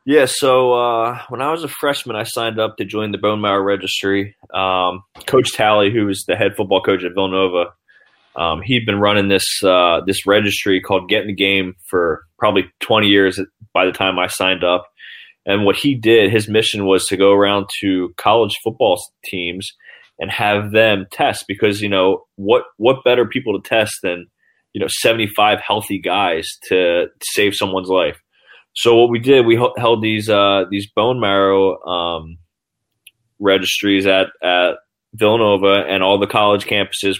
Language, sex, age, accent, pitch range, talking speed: English, male, 20-39, American, 95-115 Hz, 175 wpm